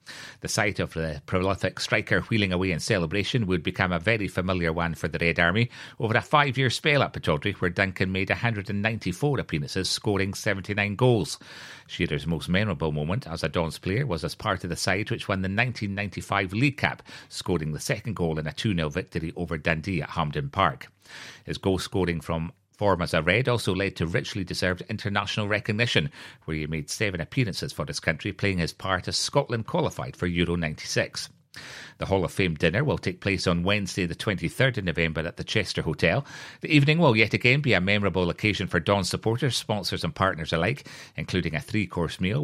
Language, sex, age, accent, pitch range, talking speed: English, male, 40-59, British, 85-115 Hz, 195 wpm